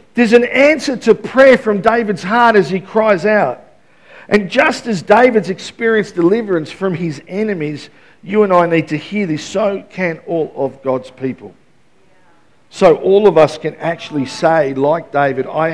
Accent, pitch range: Australian, 140-210 Hz